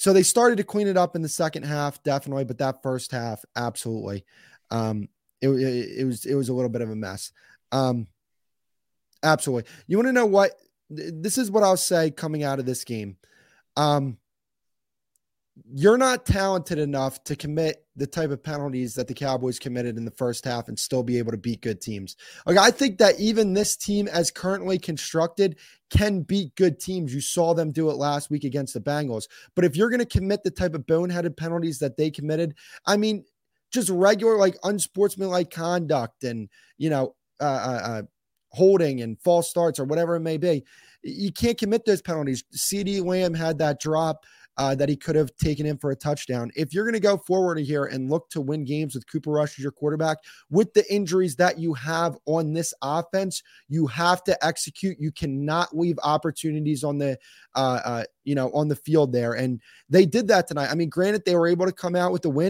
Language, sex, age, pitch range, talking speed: English, male, 20-39, 135-180 Hz, 205 wpm